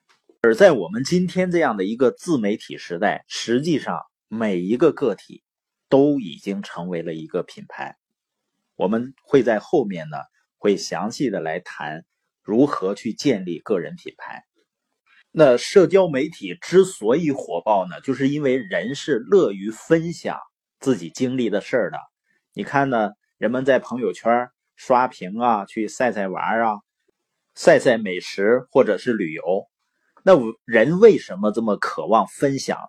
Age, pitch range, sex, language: 30-49, 120-180 Hz, male, Chinese